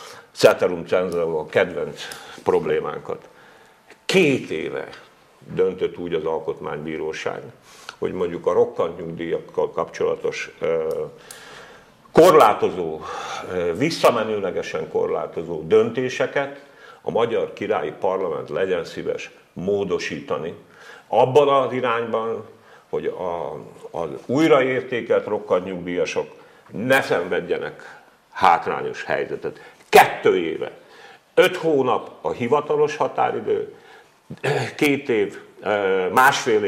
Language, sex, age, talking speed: Hungarian, male, 50-69, 80 wpm